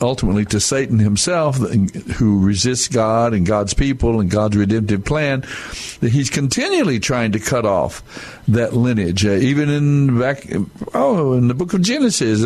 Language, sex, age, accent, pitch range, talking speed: English, male, 60-79, American, 110-140 Hz, 160 wpm